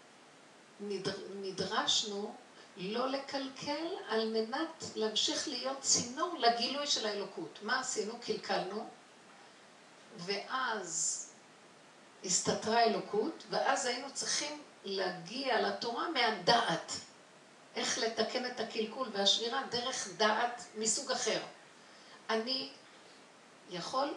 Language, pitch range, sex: Hebrew, 190-245 Hz, female